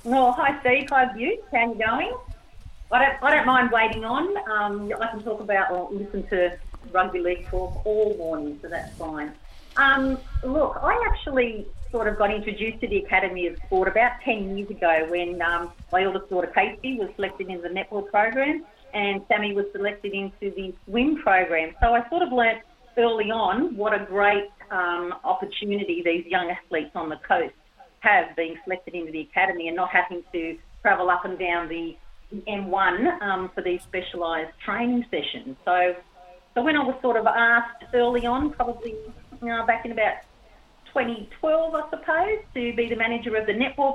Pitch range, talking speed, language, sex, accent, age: 185-245 Hz, 185 wpm, English, female, Australian, 40-59